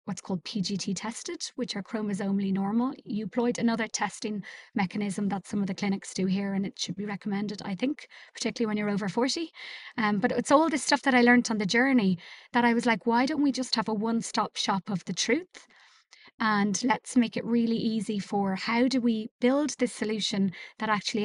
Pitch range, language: 195-235 Hz, English